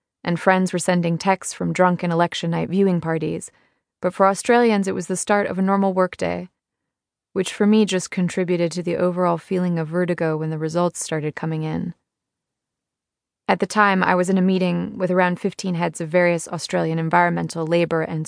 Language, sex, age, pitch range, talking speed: English, female, 20-39, 165-190 Hz, 185 wpm